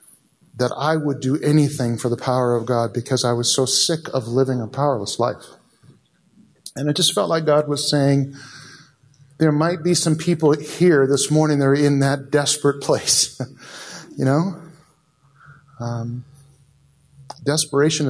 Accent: American